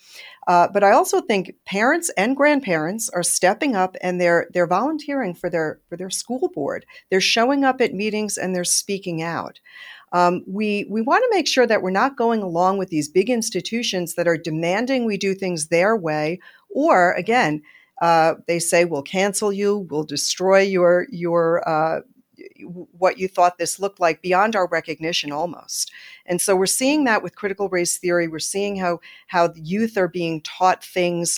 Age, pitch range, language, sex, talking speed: 50-69, 160-215 Hz, English, female, 180 wpm